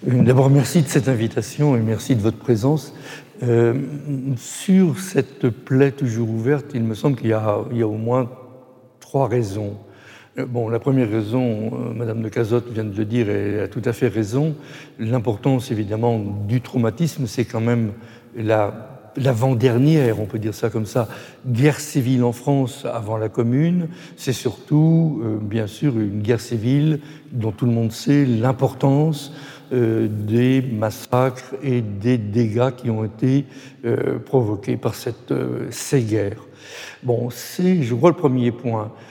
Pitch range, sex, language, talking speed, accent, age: 115-140 Hz, male, French, 165 wpm, French, 60-79